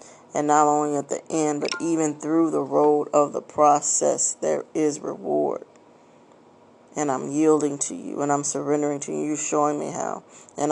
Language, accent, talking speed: English, American, 180 wpm